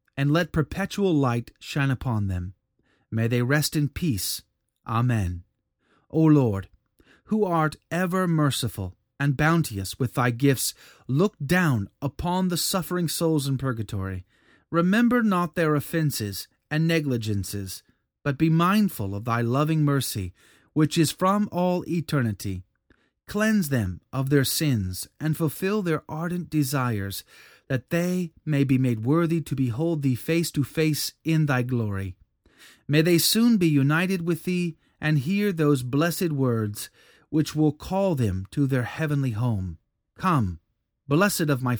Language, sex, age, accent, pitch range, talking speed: English, male, 30-49, American, 115-165 Hz, 140 wpm